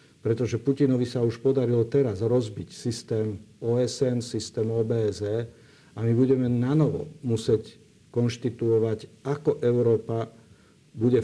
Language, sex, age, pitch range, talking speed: Slovak, male, 50-69, 110-125 Hz, 105 wpm